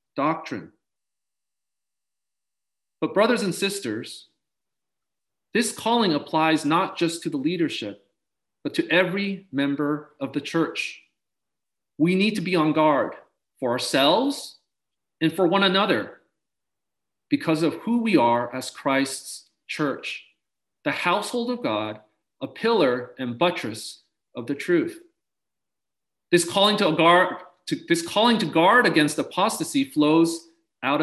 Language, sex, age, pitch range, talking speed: English, male, 40-59, 150-210 Hz, 125 wpm